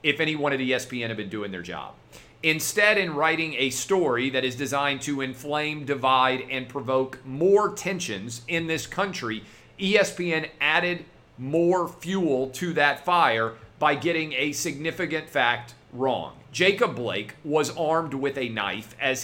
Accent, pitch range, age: American, 130-170 Hz, 40-59